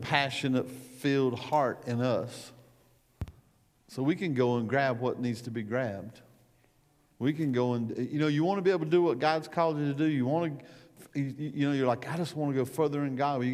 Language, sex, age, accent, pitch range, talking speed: English, male, 50-69, American, 115-140 Hz, 230 wpm